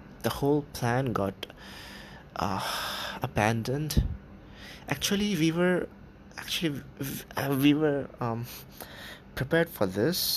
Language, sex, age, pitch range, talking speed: English, male, 20-39, 105-130 Hz, 95 wpm